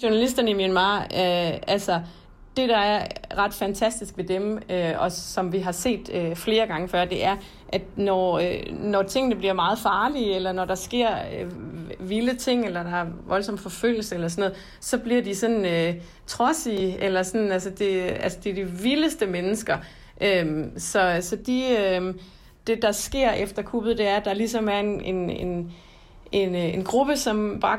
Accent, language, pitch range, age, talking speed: native, Danish, 185-225 Hz, 30-49, 180 wpm